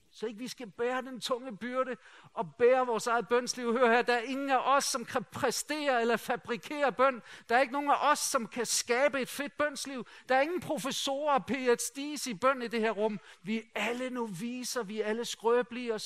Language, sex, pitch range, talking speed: Danish, male, 185-240 Hz, 225 wpm